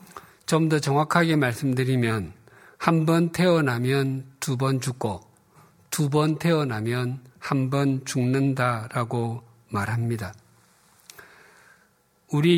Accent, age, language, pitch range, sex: native, 50-69, Korean, 115-150 Hz, male